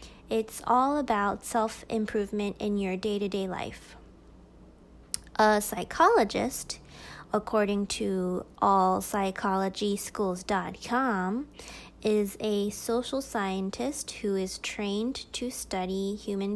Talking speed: 85 wpm